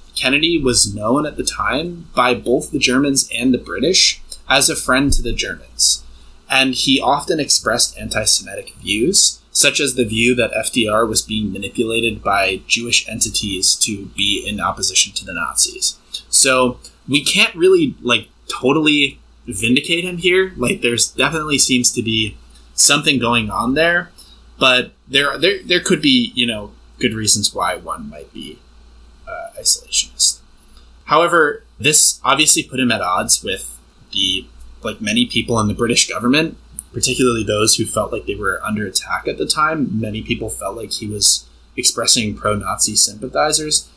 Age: 20-39